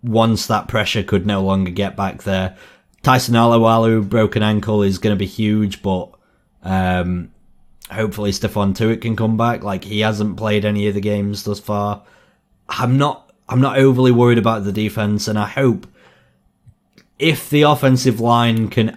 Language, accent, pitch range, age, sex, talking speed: English, British, 100-110 Hz, 30-49, male, 165 wpm